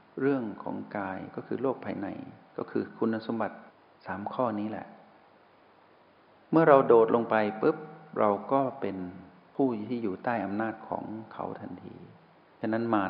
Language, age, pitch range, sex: Thai, 60-79, 100-130 Hz, male